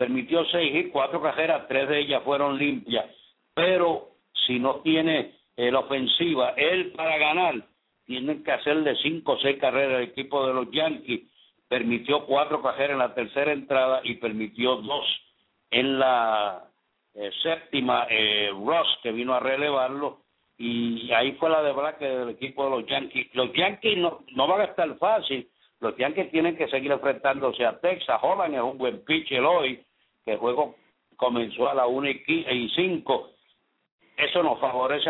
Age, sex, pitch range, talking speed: 60-79, male, 125-155 Hz, 165 wpm